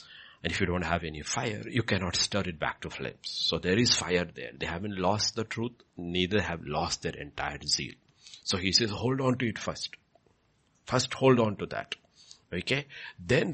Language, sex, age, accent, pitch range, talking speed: English, male, 60-79, Indian, 90-130 Hz, 200 wpm